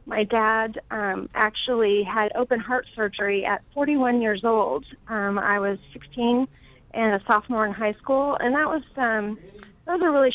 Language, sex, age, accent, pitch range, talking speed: English, female, 30-49, American, 205-240 Hz, 170 wpm